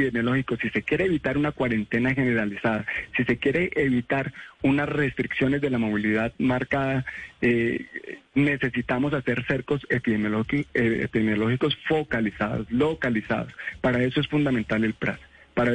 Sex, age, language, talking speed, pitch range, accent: male, 30-49, Spanish, 125 wpm, 115-140 Hz, Colombian